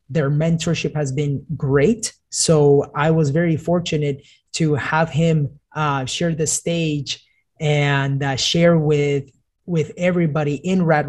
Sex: male